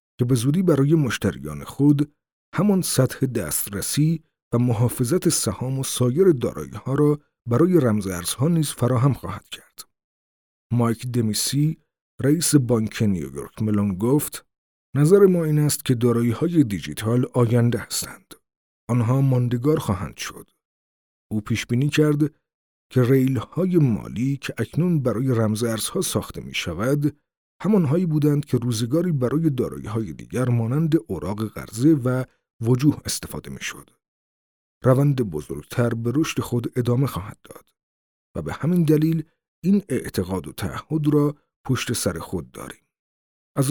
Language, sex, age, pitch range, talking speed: Persian, male, 50-69, 110-150 Hz, 130 wpm